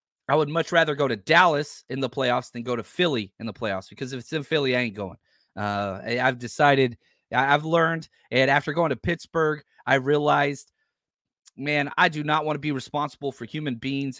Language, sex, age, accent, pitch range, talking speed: English, male, 30-49, American, 120-165 Hz, 205 wpm